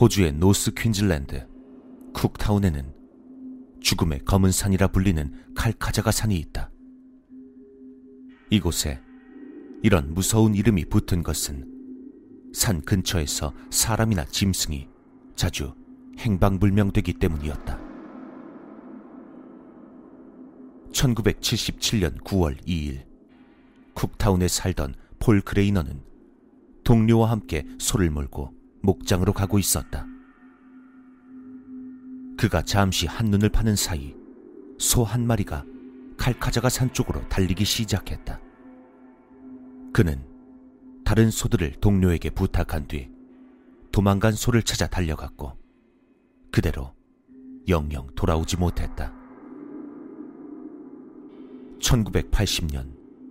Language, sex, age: Korean, male, 40-59